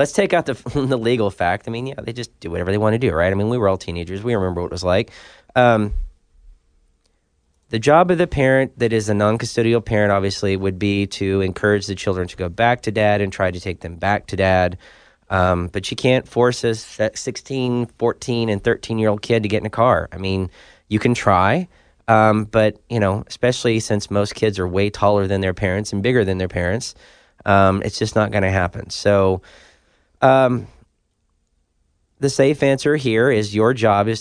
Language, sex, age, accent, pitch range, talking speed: English, male, 20-39, American, 95-120 Hz, 210 wpm